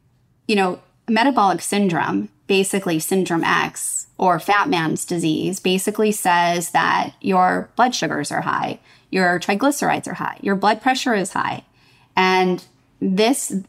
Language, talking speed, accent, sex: English, 130 wpm, American, female